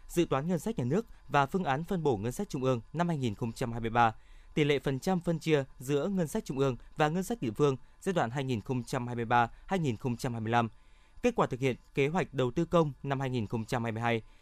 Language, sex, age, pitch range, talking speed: Vietnamese, male, 20-39, 120-165 Hz, 200 wpm